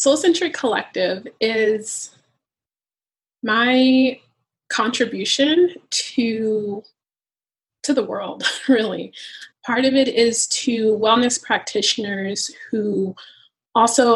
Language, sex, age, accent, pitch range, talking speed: English, female, 20-39, American, 200-260 Hz, 80 wpm